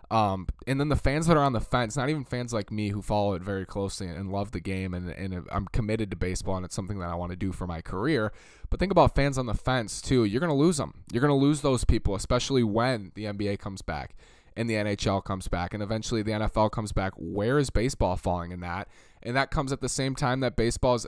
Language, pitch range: English, 100-130 Hz